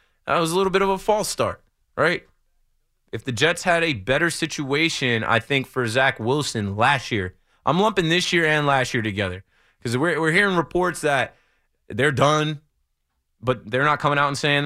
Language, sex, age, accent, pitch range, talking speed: English, male, 20-39, American, 115-180 Hz, 190 wpm